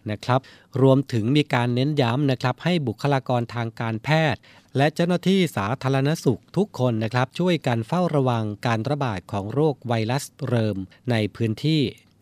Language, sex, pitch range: Thai, male, 110-135 Hz